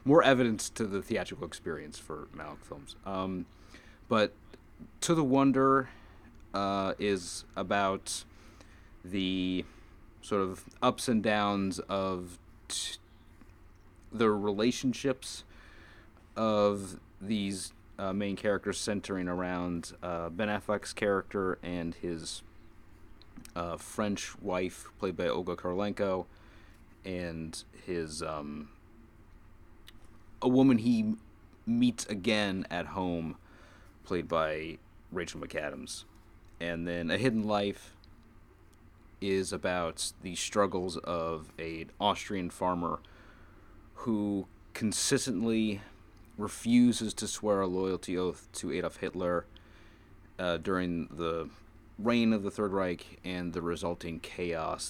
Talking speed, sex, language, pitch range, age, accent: 105 wpm, male, English, 85-105 Hz, 30-49, American